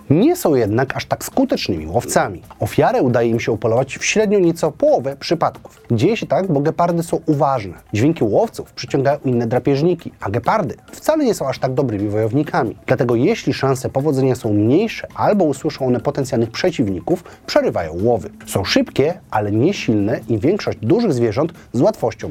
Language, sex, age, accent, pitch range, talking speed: Polish, male, 30-49, native, 120-170 Hz, 165 wpm